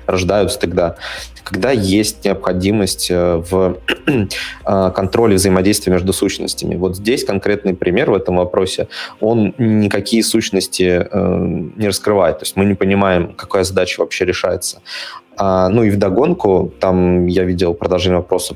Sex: male